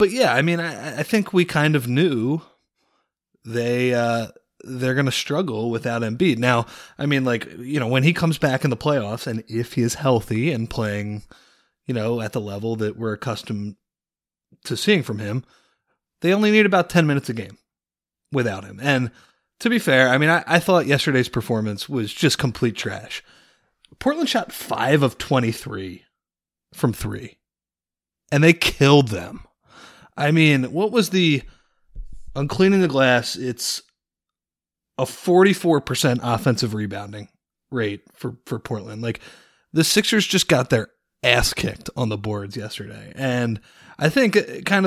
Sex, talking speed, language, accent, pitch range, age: male, 165 wpm, English, American, 110-155 Hz, 30-49